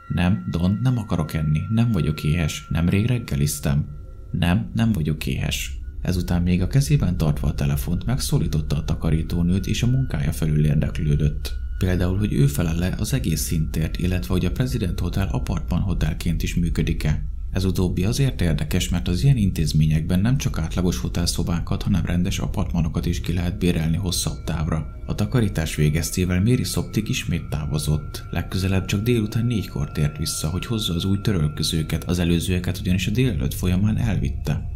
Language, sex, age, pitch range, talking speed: Hungarian, male, 20-39, 80-100 Hz, 155 wpm